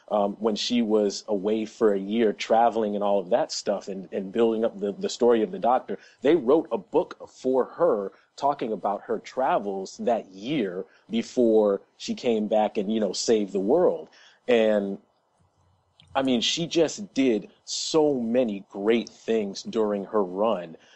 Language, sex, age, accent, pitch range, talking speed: English, male, 30-49, American, 100-125 Hz, 170 wpm